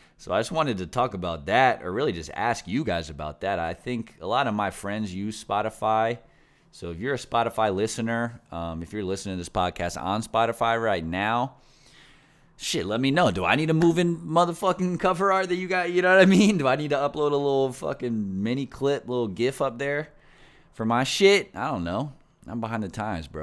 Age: 30-49